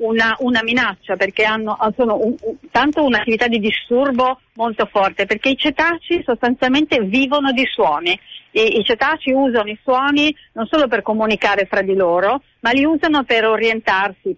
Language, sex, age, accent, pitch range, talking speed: Italian, female, 40-59, native, 205-265 Hz, 165 wpm